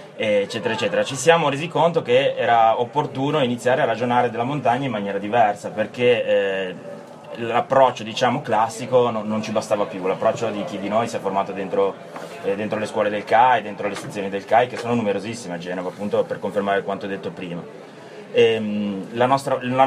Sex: male